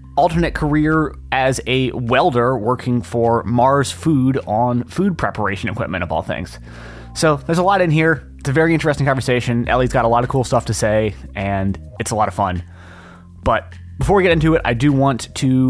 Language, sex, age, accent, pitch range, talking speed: English, male, 30-49, American, 105-140 Hz, 200 wpm